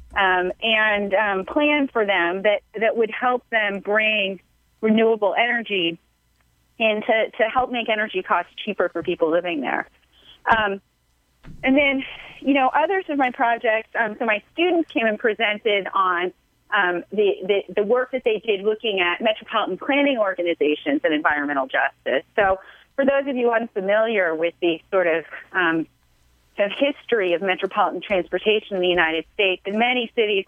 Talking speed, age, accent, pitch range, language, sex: 160 wpm, 30-49, American, 185-240 Hz, English, female